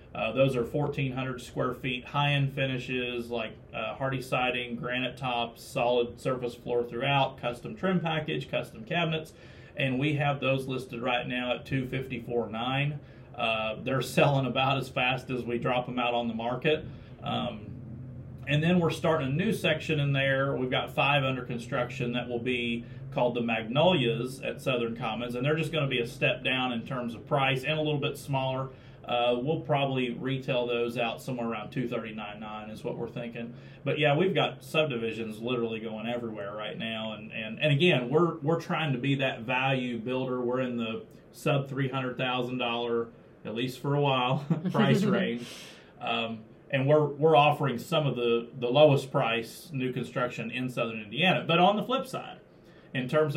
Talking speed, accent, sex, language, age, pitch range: 180 wpm, American, male, English, 40-59, 120-145 Hz